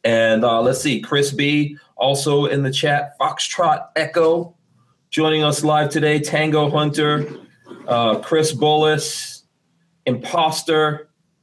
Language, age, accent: English, 30-49, American